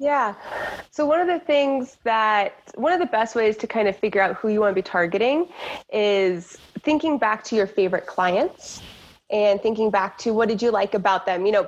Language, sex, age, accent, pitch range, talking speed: English, female, 20-39, American, 195-235 Hz, 210 wpm